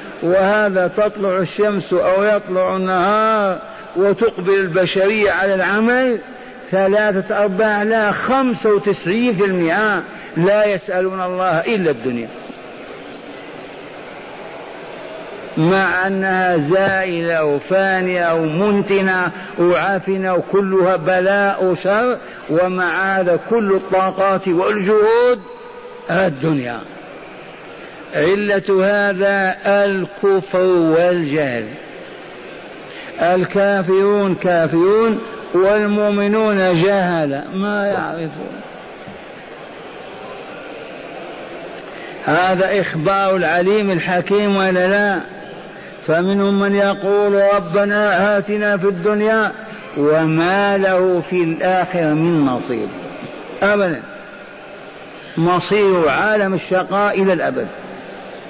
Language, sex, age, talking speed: Arabic, male, 50-69, 75 wpm